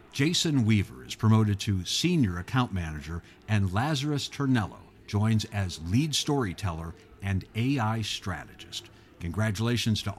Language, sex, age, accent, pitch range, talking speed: English, male, 50-69, American, 95-125 Hz, 120 wpm